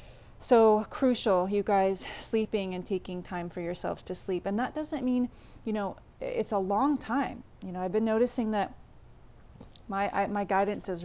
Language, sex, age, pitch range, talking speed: English, female, 30-49, 175-205 Hz, 175 wpm